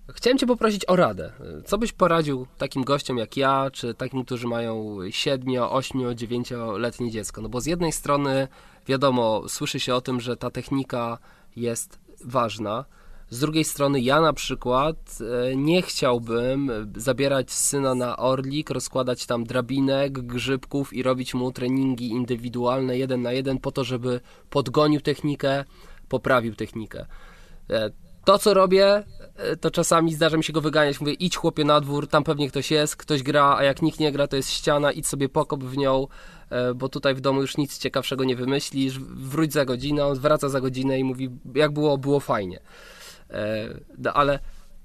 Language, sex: Polish, male